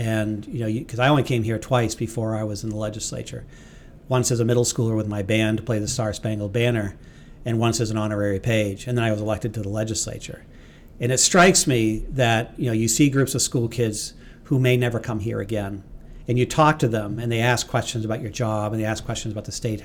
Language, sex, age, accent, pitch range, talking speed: English, male, 50-69, American, 110-125 Hz, 245 wpm